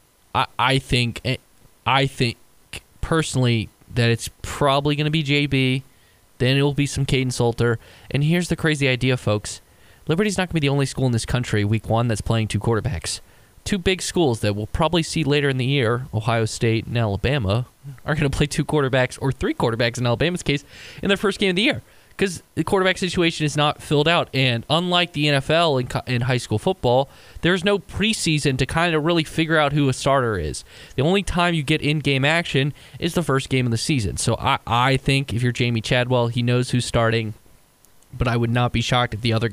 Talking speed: 215 wpm